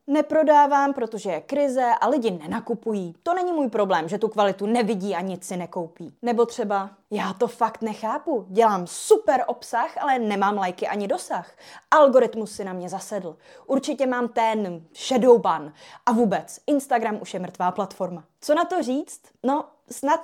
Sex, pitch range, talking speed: female, 200-260 Hz, 165 wpm